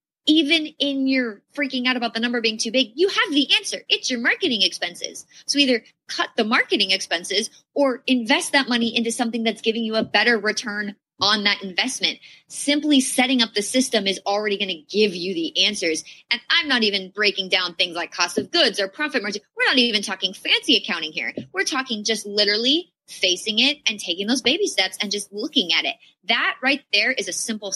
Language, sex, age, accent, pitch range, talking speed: English, female, 20-39, American, 190-260 Hz, 210 wpm